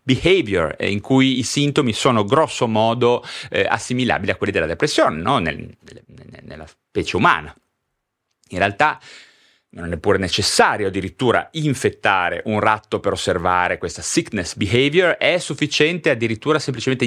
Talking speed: 135 wpm